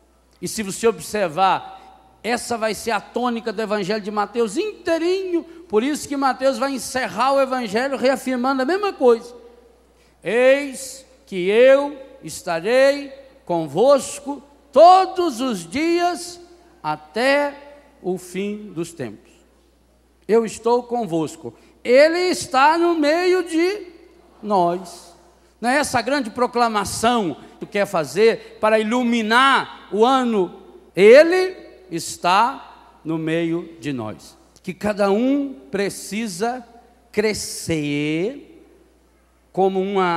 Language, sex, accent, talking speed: Portuguese, male, Brazilian, 110 wpm